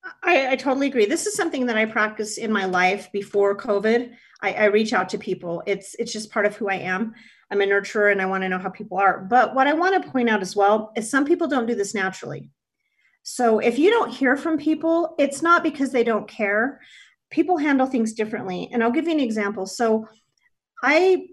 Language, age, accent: English, 40-59, American